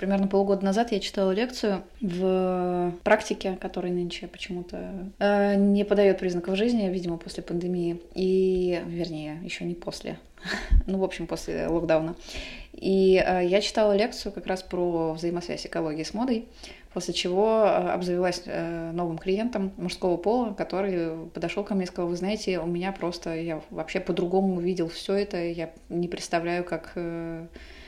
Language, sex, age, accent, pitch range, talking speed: Russian, female, 20-39, native, 170-200 Hz, 155 wpm